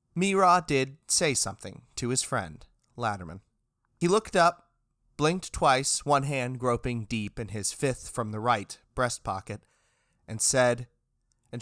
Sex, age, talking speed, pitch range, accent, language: male, 30-49, 145 wpm, 105-140 Hz, American, English